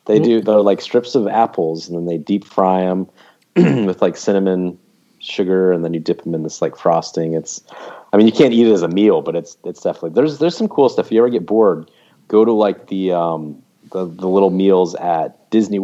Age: 30-49